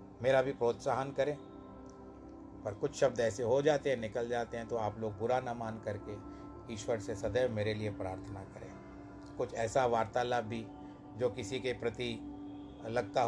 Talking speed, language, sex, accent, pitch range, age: 165 wpm, Hindi, male, native, 105-120 Hz, 40-59